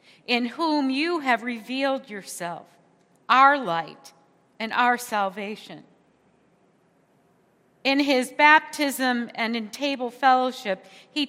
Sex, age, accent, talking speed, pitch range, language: female, 50-69, American, 100 wpm, 225-285 Hz, English